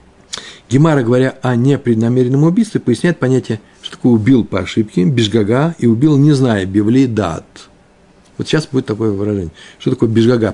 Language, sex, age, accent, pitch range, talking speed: Russian, male, 60-79, native, 105-145 Hz, 150 wpm